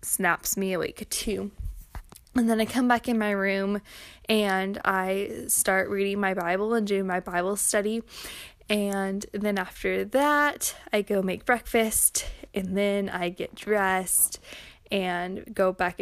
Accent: American